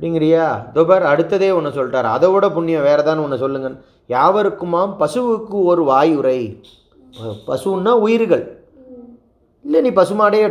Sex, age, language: male, 30-49, Tamil